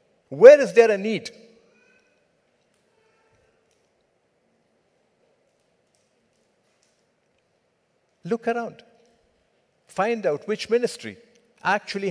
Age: 50-69